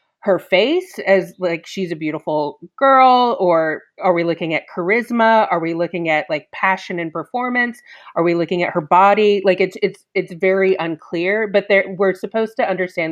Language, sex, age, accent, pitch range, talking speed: English, female, 30-49, American, 160-200 Hz, 185 wpm